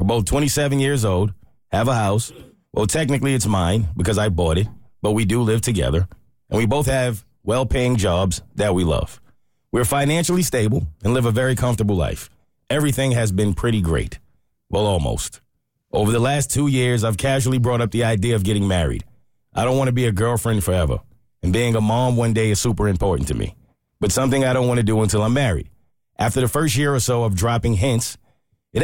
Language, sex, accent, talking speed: English, male, American, 205 wpm